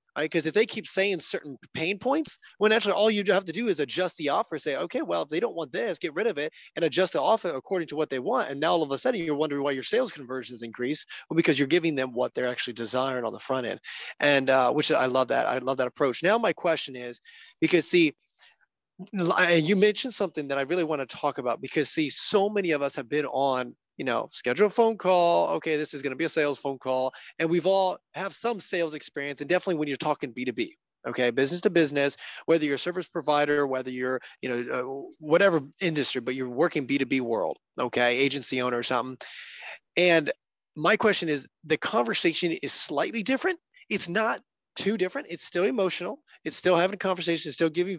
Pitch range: 135-180 Hz